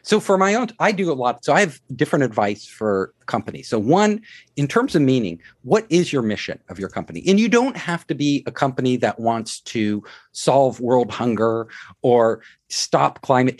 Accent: American